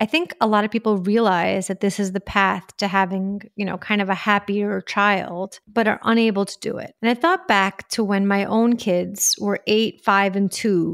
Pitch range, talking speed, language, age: 195-225 Hz, 225 wpm, English, 30-49